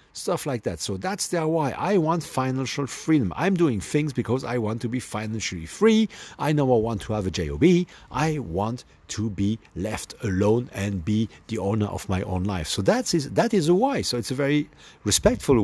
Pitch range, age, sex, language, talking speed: 100-165 Hz, 50-69, male, English, 210 wpm